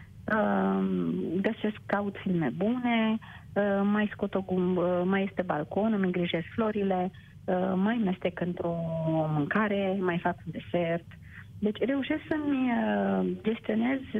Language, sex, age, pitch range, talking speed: Romanian, female, 30-49, 180-215 Hz, 110 wpm